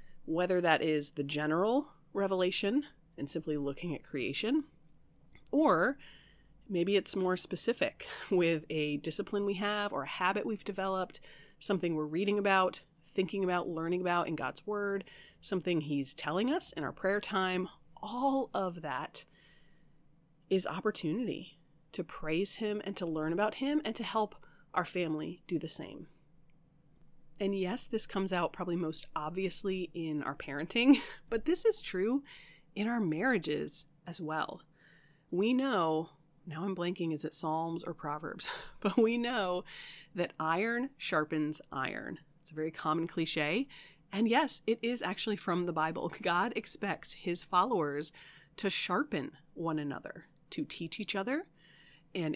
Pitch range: 160-200 Hz